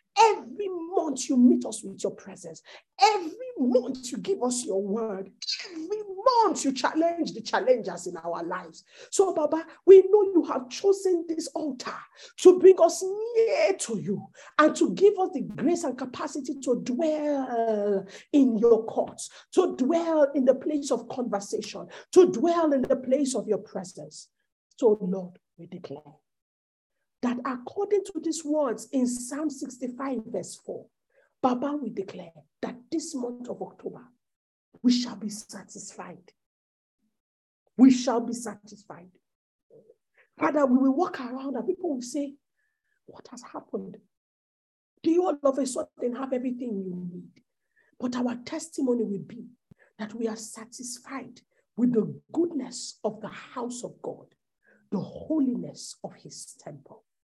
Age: 50-69